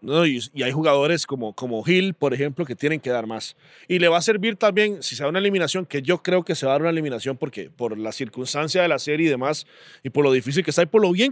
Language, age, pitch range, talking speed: Spanish, 30-49, 140-190 Hz, 290 wpm